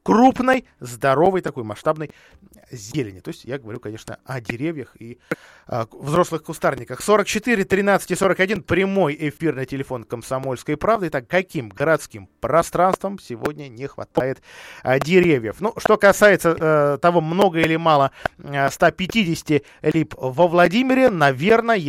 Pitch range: 135-190 Hz